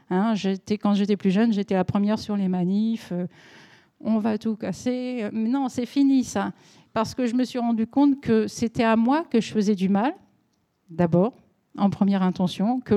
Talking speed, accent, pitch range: 195 wpm, French, 205-245 Hz